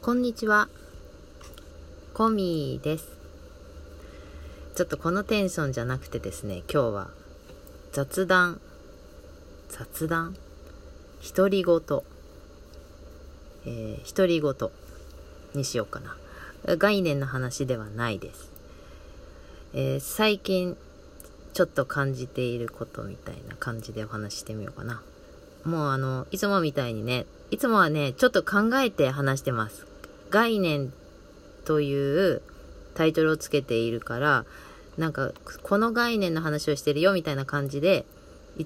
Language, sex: Japanese, female